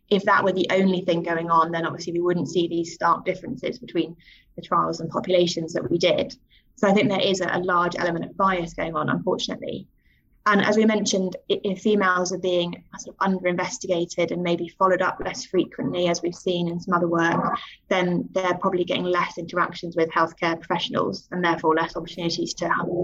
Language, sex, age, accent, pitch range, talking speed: English, female, 20-39, British, 175-195 Hz, 200 wpm